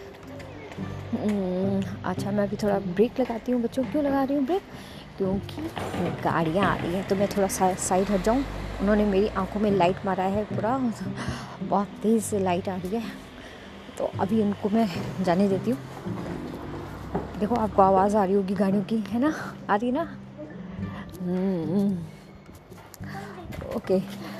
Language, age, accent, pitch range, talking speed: Hindi, 20-39, native, 190-225 Hz, 150 wpm